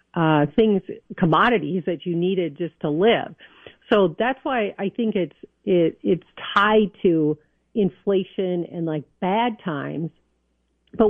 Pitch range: 150-195 Hz